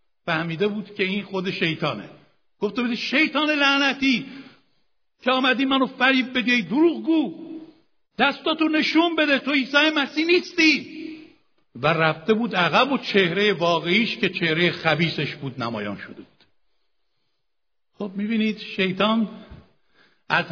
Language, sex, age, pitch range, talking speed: Persian, male, 60-79, 185-255 Hz, 115 wpm